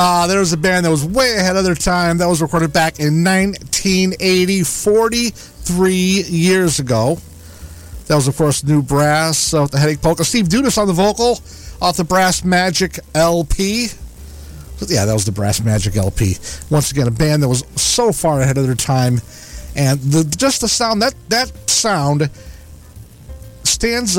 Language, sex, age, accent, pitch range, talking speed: English, male, 50-69, American, 120-180 Hz, 175 wpm